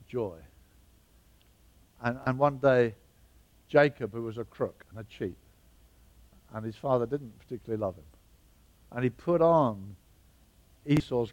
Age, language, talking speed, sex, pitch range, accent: 60-79, English, 130 wpm, male, 100-170 Hz, British